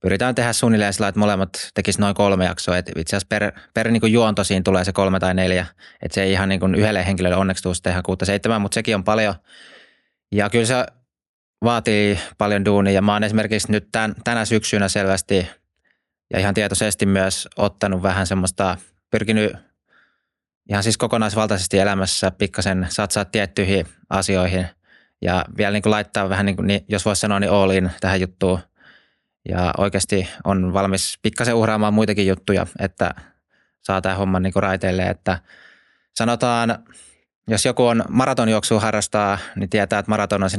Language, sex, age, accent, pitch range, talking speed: Finnish, male, 20-39, native, 95-110 Hz, 165 wpm